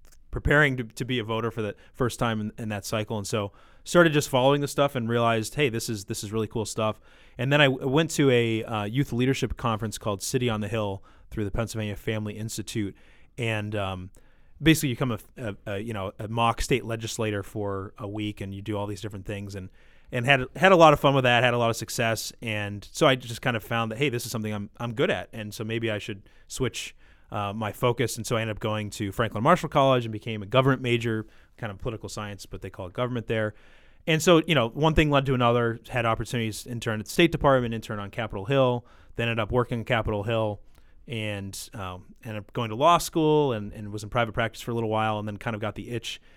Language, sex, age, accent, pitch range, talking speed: English, male, 20-39, American, 105-125 Hz, 250 wpm